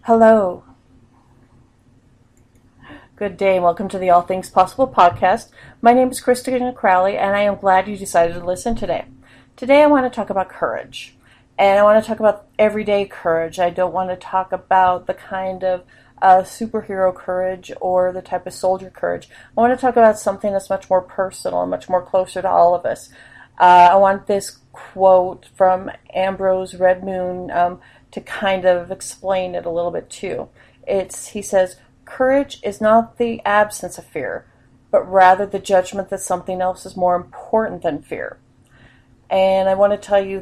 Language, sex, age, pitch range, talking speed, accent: English, female, 40-59, 175-200 Hz, 180 wpm, American